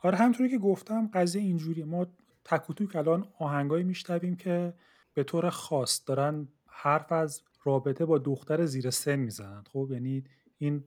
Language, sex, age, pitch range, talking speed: English, male, 30-49, 135-170 Hz, 150 wpm